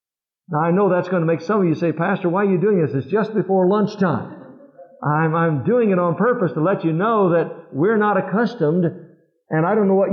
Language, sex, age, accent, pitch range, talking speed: English, male, 60-79, American, 155-190 Hz, 235 wpm